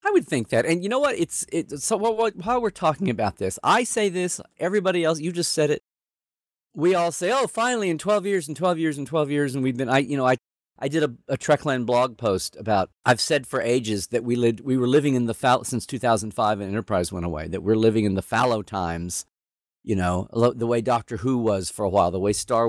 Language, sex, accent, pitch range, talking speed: English, male, American, 95-135 Hz, 250 wpm